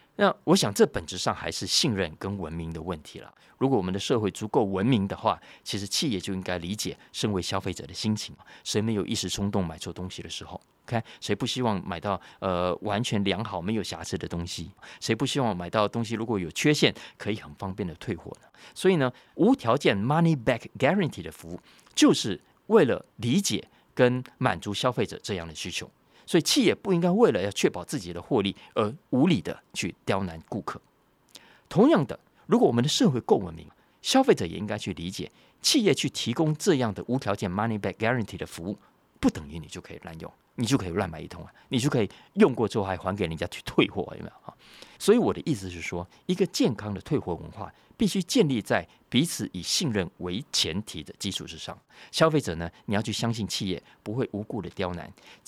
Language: Chinese